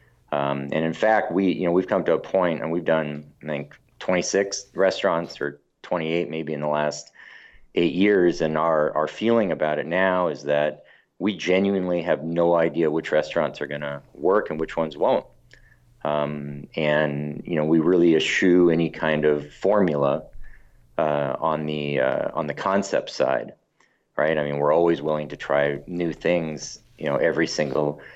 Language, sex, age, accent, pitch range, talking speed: English, male, 40-59, American, 75-90 Hz, 180 wpm